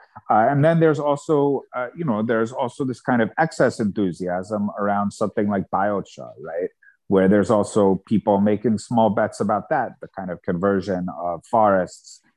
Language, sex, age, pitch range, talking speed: English, male, 30-49, 95-130 Hz, 170 wpm